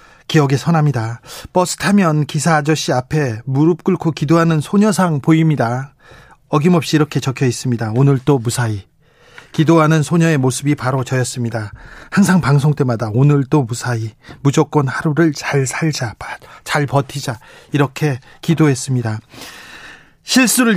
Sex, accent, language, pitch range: male, native, Korean, 135-175 Hz